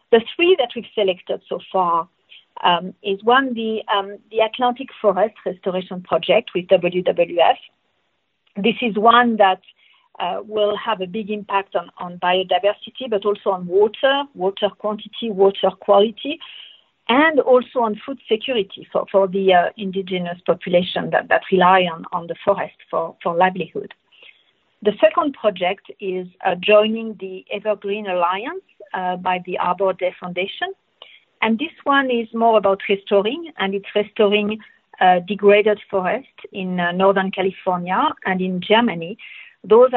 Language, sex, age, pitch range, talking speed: English, female, 50-69, 185-230 Hz, 145 wpm